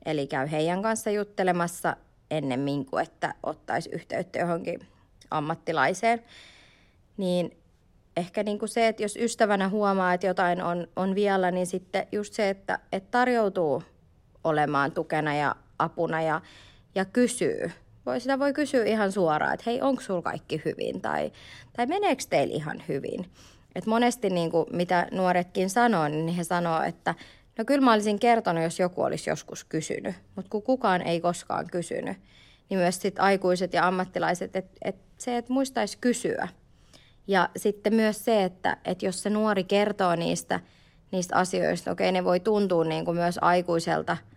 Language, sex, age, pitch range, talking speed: Finnish, female, 30-49, 165-215 Hz, 150 wpm